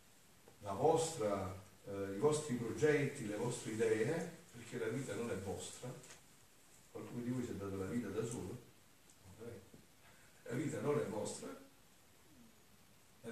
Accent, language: native, Italian